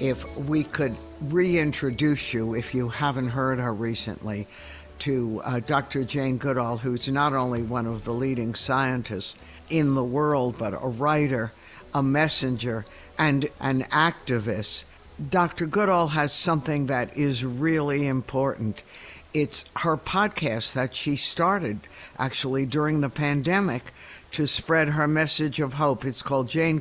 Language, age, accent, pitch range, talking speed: English, 60-79, American, 125-155 Hz, 140 wpm